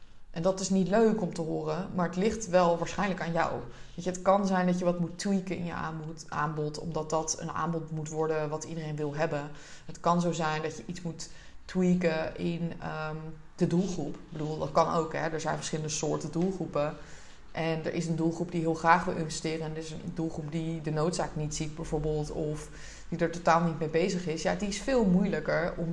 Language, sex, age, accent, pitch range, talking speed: Dutch, female, 20-39, Dutch, 155-180 Hz, 220 wpm